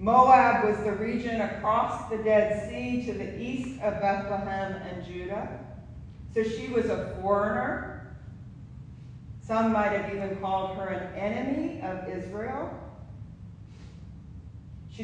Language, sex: English, female